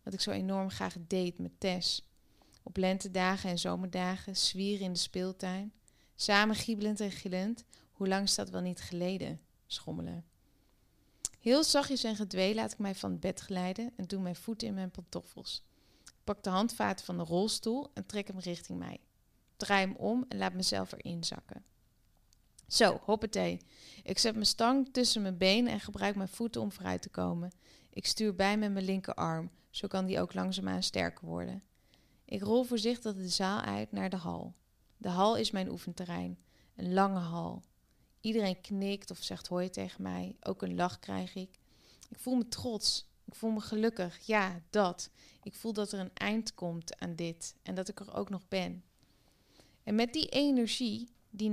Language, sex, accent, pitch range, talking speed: Dutch, female, Dutch, 175-215 Hz, 185 wpm